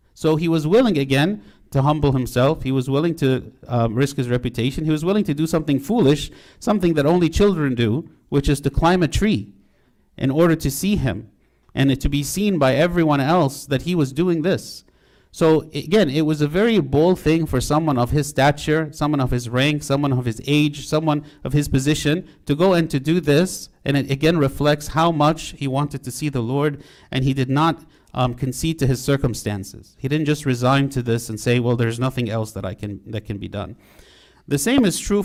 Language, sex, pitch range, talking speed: English, male, 120-150 Hz, 215 wpm